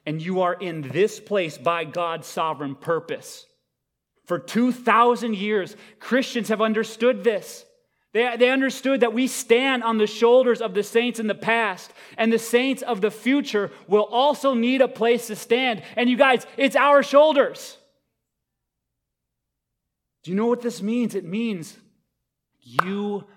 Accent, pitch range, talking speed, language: American, 160-240 Hz, 155 wpm, English